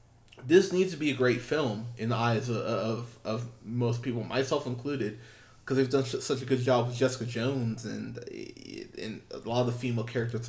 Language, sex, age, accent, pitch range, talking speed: English, male, 20-39, American, 115-130 Hz, 205 wpm